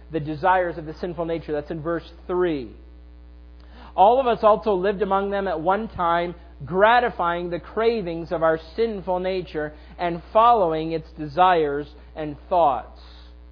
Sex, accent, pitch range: male, American, 160-215 Hz